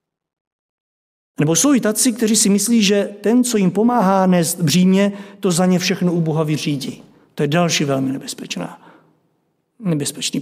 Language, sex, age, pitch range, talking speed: Czech, male, 50-69, 155-190 Hz, 155 wpm